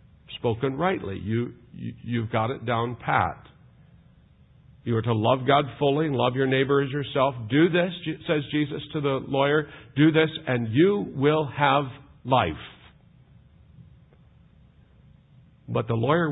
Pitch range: 130-180 Hz